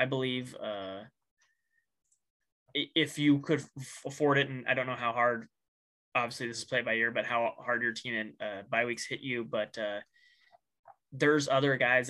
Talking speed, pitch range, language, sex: 180 wpm, 115-140 Hz, English, male